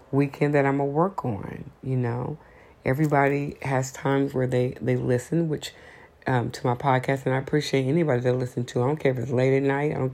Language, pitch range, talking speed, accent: English, 120-140 Hz, 220 wpm, American